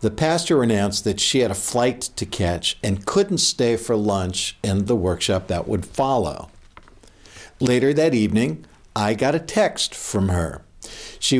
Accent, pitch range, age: American, 95-130 Hz, 60-79